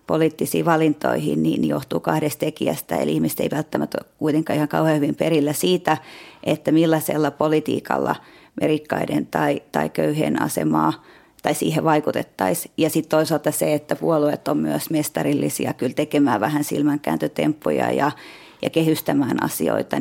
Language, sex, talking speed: Finnish, female, 135 wpm